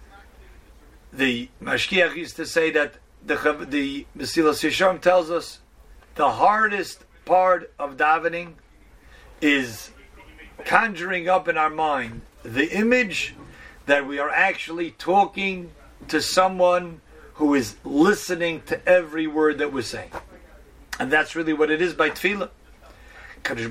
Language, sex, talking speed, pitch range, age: English, male, 130 wpm, 140-180 Hz, 50-69